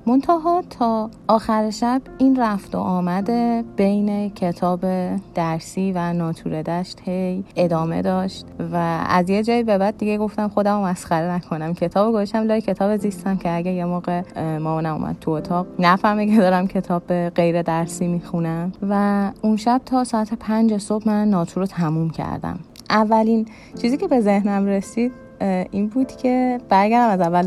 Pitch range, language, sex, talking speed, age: 170-210 Hz, Persian, female, 155 wpm, 30-49